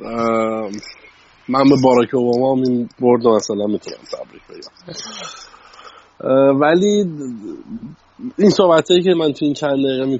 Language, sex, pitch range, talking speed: Persian, male, 115-145 Hz, 110 wpm